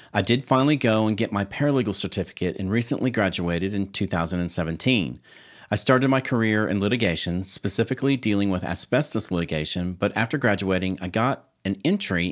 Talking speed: 155 wpm